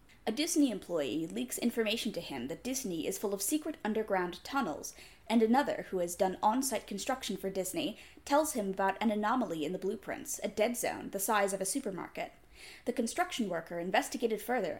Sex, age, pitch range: female, 20-39, 195-255 Hz